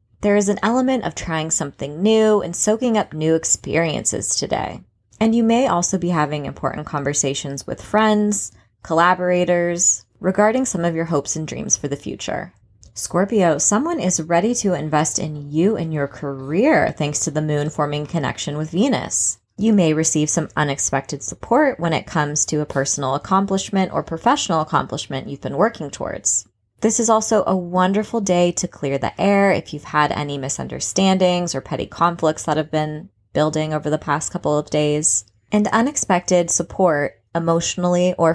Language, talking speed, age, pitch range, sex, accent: English, 165 wpm, 20-39, 150-190 Hz, female, American